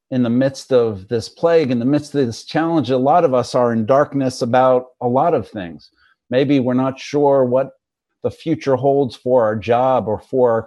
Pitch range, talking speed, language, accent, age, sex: 105-130 Hz, 215 wpm, English, American, 50-69, male